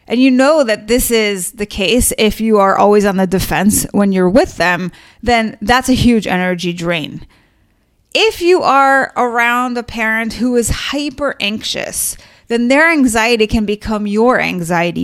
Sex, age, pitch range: female, 30-49, 200-265 Hz